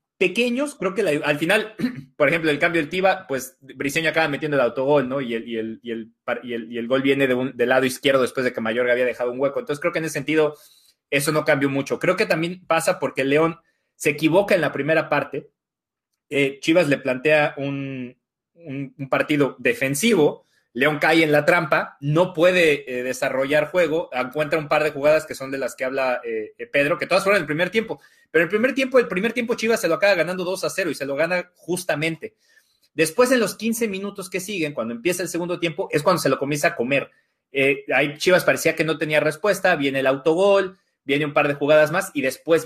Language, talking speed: Spanish, 215 wpm